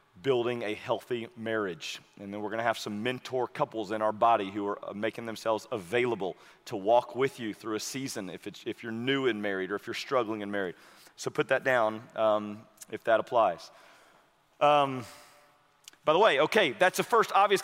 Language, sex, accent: English, male, American